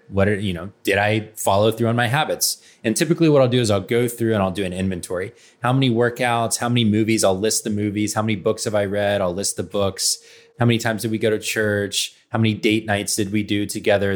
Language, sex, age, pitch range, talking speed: English, male, 20-39, 100-120 Hz, 260 wpm